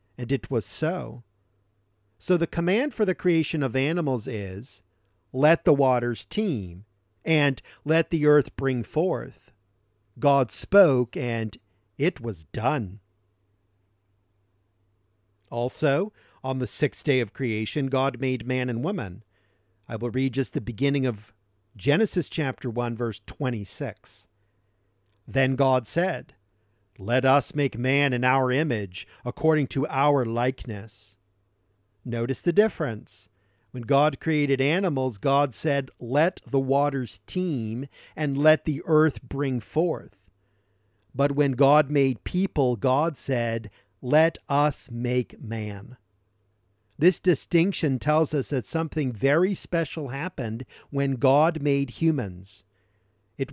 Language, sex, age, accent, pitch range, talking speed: English, male, 50-69, American, 105-145 Hz, 125 wpm